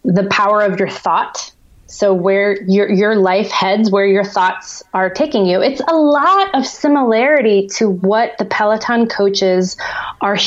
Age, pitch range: 20-39, 185-220 Hz